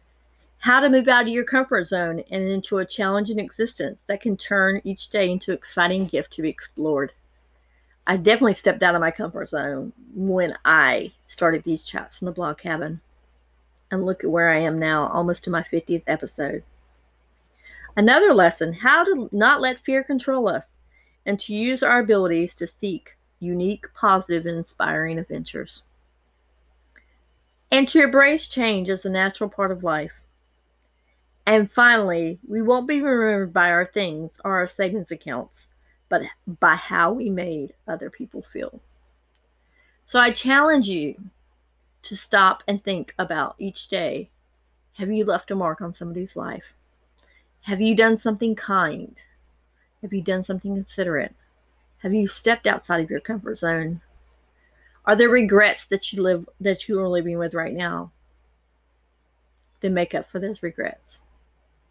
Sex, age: female, 40-59